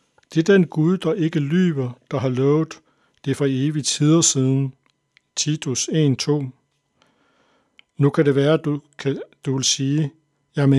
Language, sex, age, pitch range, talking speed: Danish, male, 60-79, 135-155 Hz, 155 wpm